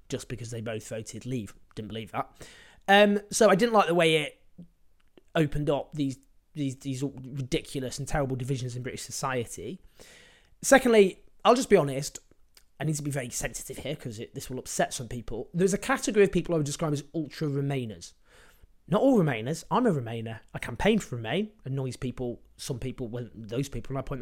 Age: 20-39